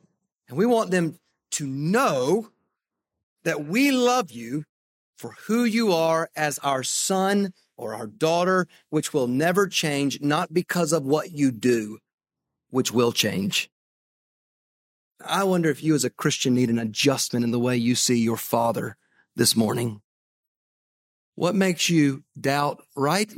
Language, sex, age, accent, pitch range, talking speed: English, male, 40-59, American, 130-180 Hz, 145 wpm